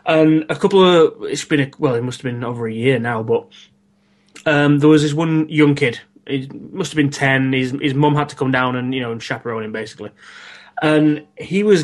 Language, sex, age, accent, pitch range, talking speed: English, male, 20-39, British, 135-160 Hz, 235 wpm